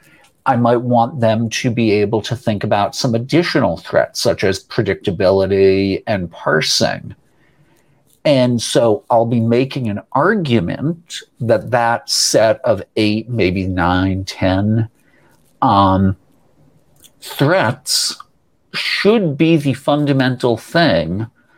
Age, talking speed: 50-69, 110 wpm